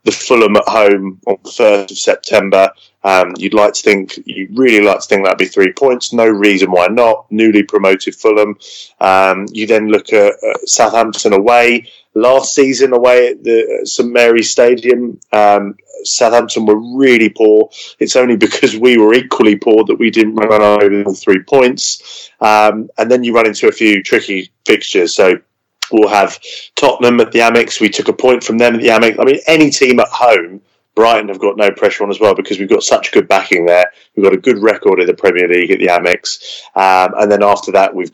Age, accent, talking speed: 20-39, British, 210 wpm